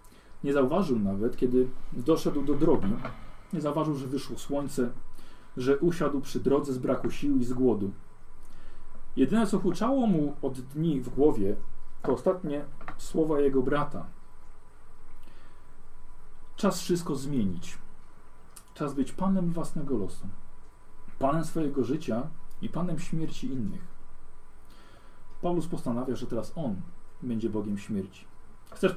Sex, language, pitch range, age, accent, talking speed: male, Polish, 115-165 Hz, 40-59, native, 120 wpm